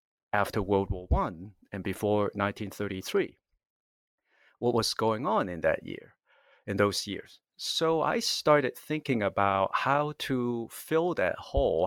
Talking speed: 135 wpm